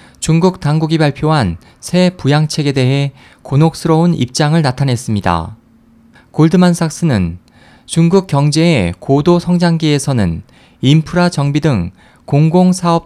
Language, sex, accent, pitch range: Korean, male, native, 125-170 Hz